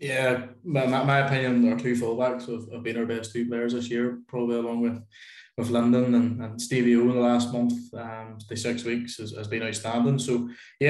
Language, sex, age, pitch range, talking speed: English, male, 20-39, 120-125 Hz, 210 wpm